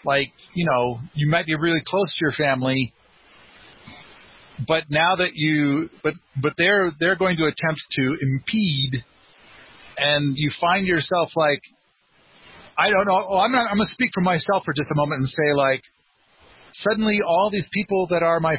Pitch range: 140-180 Hz